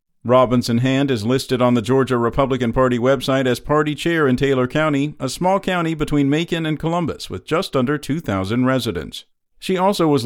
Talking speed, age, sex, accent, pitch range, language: 180 wpm, 50-69, male, American, 125-160 Hz, English